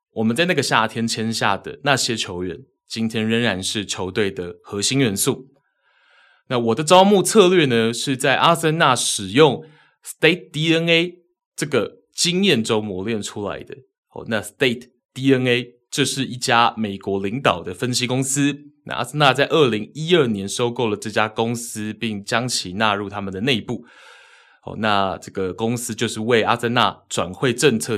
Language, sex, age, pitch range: Chinese, male, 20-39, 105-140 Hz